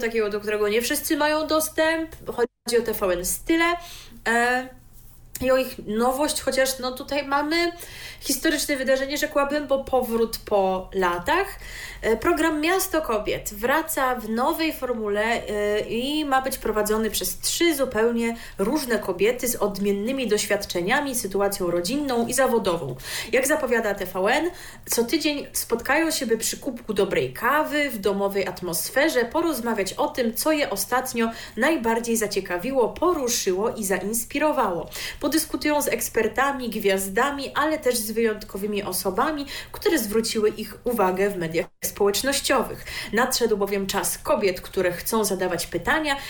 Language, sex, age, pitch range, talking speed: Polish, female, 30-49, 200-280 Hz, 130 wpm